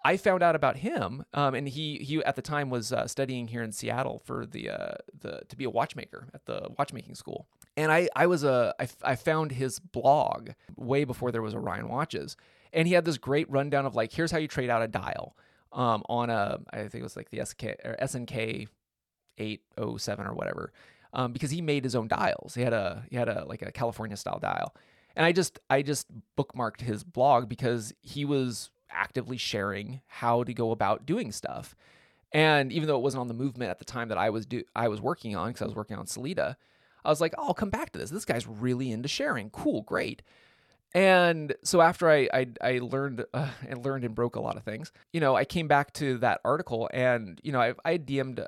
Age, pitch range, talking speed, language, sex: 20-39, 115-145 Hz, 230 wpm, English, male